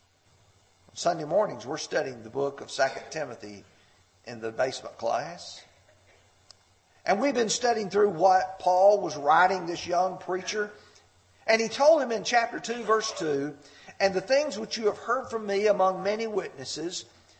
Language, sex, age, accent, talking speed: English, male, 50-69, American, 160 wpm